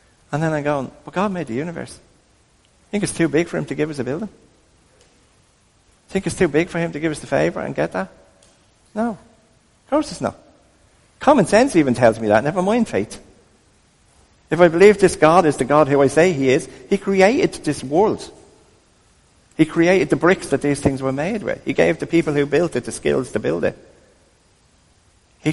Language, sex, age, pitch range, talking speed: English, male, 50-69, 120-165 Hz, 205 wpm